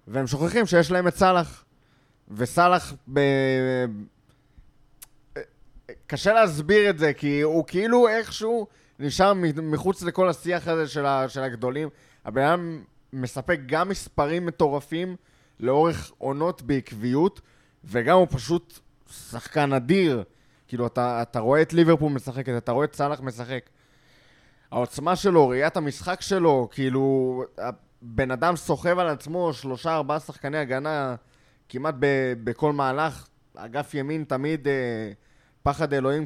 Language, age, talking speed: Hebrew, 20-39, 120 wpm